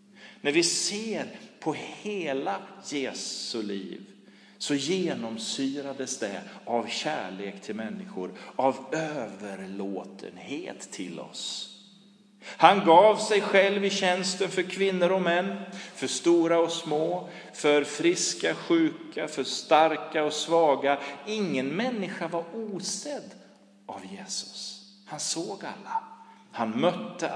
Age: 40-59